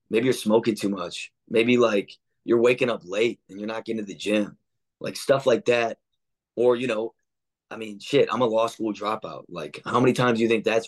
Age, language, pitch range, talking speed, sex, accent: 20-39, English, 100-115 Hz, 225 wpm, male, American